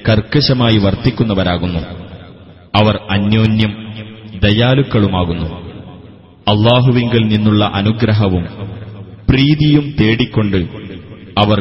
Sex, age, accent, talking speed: male, 30-49, native, 55 wpm